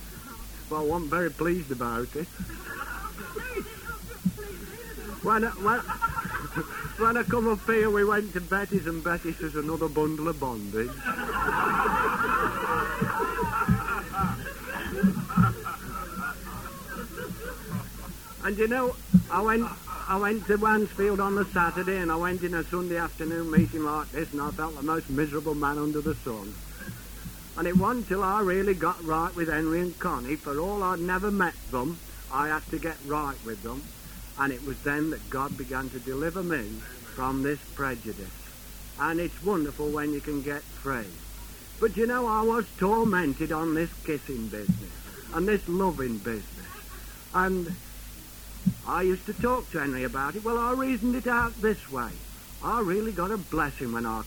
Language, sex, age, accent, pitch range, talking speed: English, male, 60-79, British, 140-190 Hz, 155 wpm